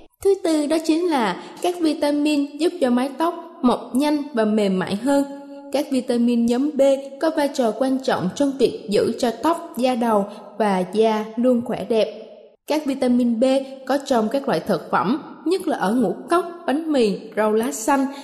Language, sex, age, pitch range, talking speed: Vietnamese, female, 20-39, 225-310 Hz, 190 wpm